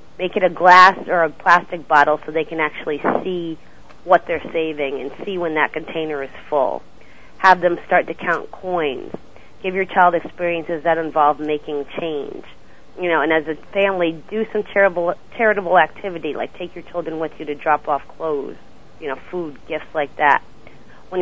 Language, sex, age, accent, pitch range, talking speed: English, female, 40-59, American, 155-180 Hz, 185 wpm